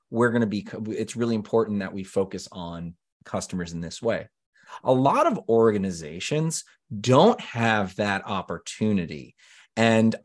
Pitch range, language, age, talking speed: 100-145 Hz, English, 30-49, 140 wpm